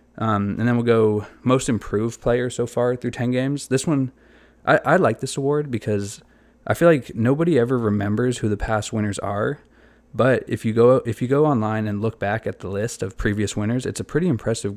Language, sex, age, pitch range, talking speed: English, male, 20-39, 100-120 Hz, 215 wpm